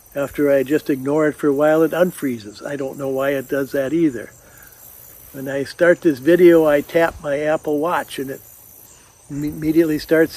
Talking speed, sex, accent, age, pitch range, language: 185 wpm, male, American, 60-79, 125-160 Hz, English